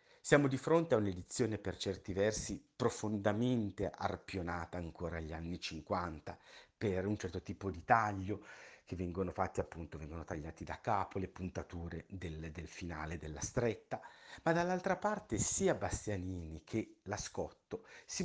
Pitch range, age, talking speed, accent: 85-110 Hz, 50-69, 140 wpm, native